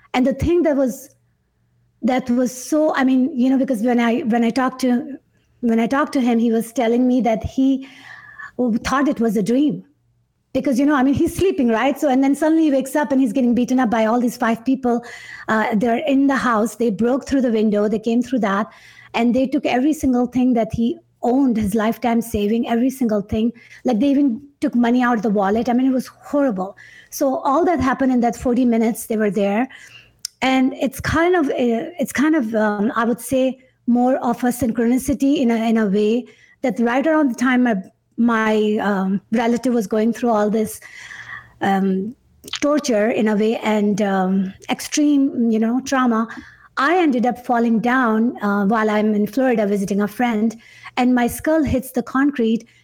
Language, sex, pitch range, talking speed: English, female, 225-265 Hz, 205 wpm